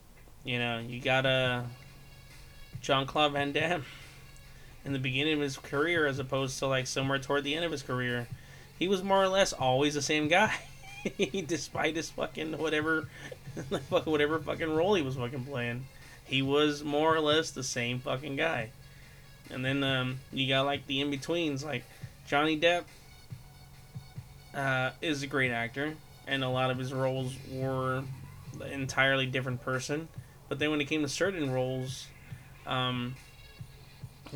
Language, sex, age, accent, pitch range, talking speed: English, male, 20-39, American, 130-150 Hz, 155 wpm